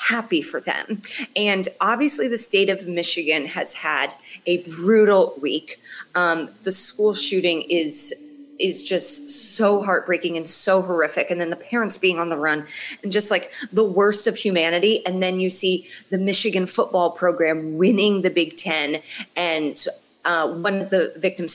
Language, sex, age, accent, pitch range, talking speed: English, female, 30-49, American, 175-245 Hz, 165 wpm